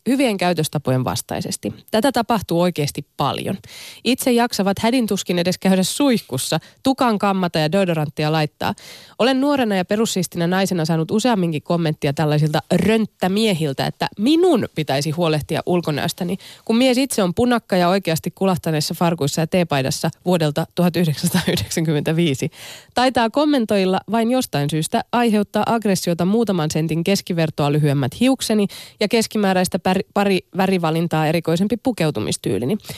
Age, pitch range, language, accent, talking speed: 20-39, 160-220 Hz, Finnish, native, 120 wpm